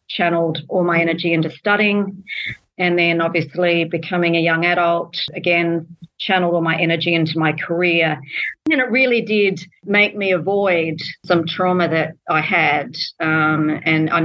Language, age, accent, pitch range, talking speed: English, 40-59, Australian, 155-180 Hz, 150 wpm